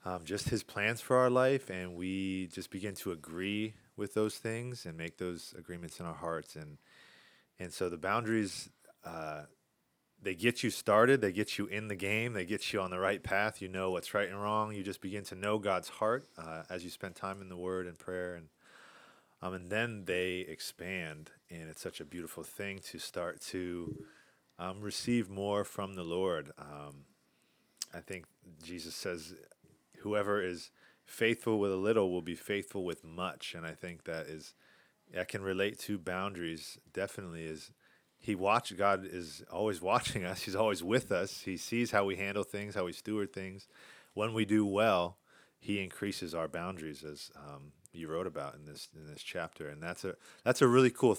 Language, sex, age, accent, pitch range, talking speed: English, male, 30-49, American, 85-105 Hz, 190 wpm